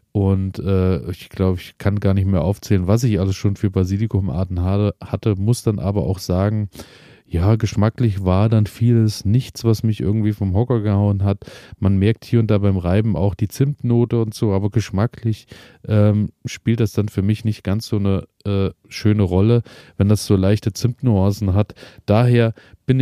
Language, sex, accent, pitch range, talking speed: German, male, German, 95-110 Hz, 185 wpm